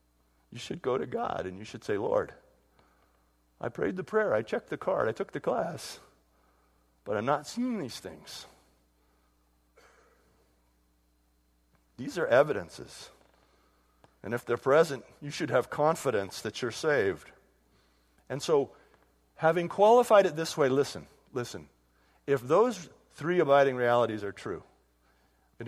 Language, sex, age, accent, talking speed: English, male, 50-69, American, 140 wpm